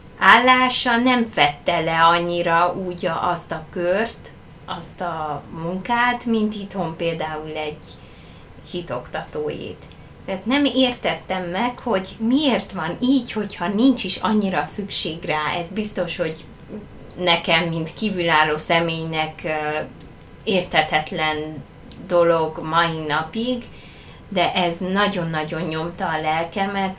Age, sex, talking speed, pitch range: 20-39, female, 105 wpm, 160-195 Hz